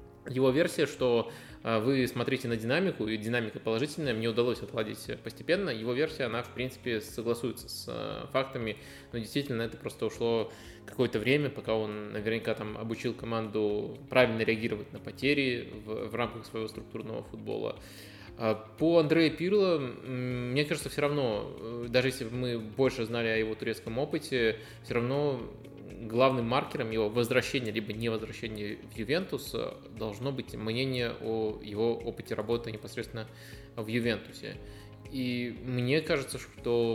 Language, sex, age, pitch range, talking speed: Russian, male, 20-39, 110-125 Hz, 140 wpm